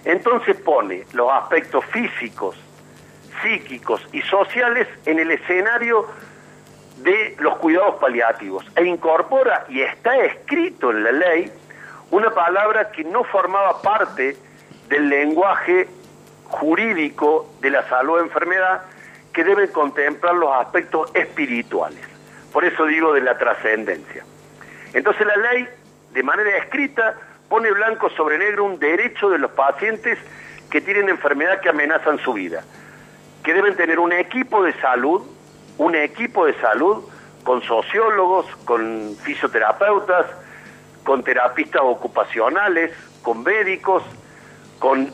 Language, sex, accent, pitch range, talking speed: Spanish, male, Argentinian, 165-240 Hz, 120 wpm